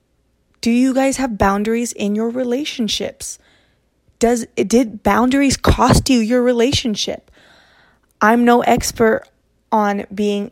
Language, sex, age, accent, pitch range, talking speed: English, female, 20-39, American, 195-235 Hz, 115 wpm